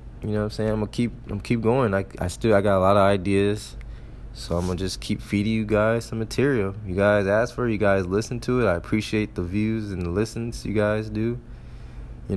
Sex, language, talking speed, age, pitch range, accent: male, English, 245 wpm, 20-39, 90-110 Hz, American